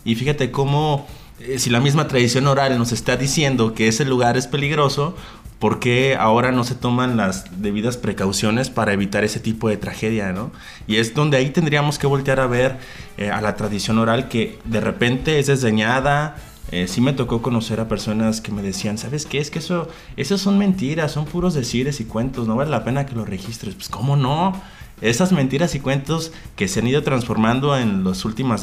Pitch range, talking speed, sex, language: 110-145 Hz, 205 wpm, male, Spanish